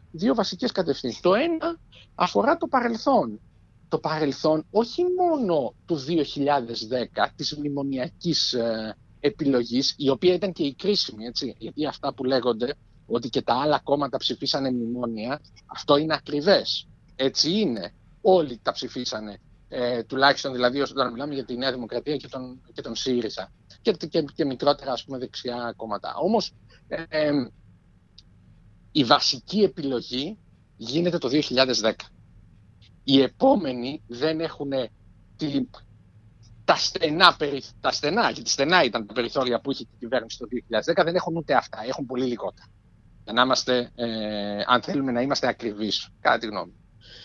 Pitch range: 115-165 Hz